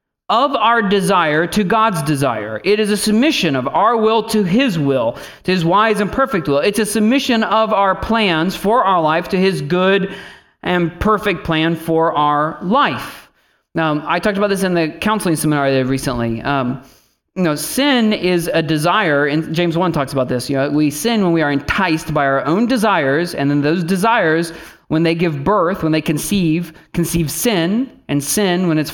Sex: male